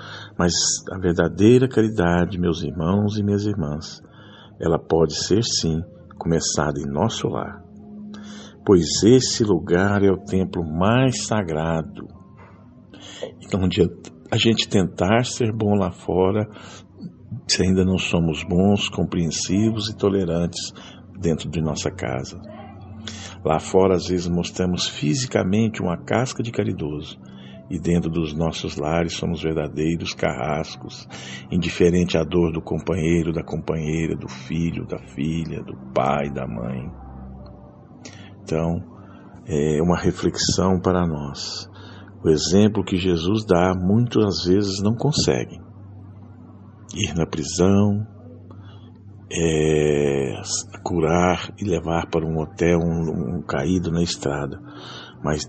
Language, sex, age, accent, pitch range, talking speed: Portuguese, male, 60-79, Brazilian, 80-100 Hz, 120 wpm